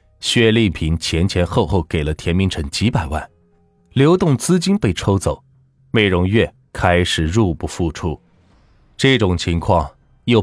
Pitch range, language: 85-115 Hz, Chinese